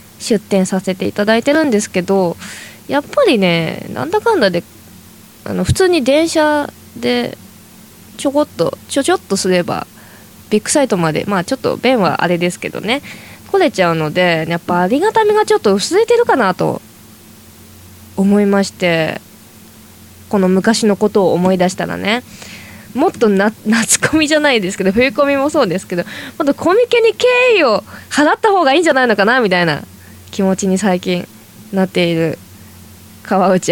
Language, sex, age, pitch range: Japanese, female, 20-39, 175-250 Hz